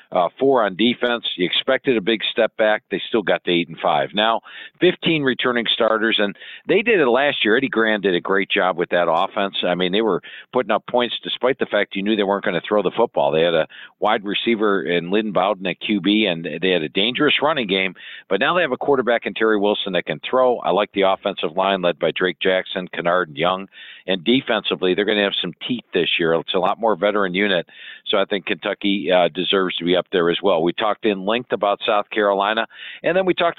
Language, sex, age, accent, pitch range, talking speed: English, male, 50-69, American, 100-125 Hz, 240 wpm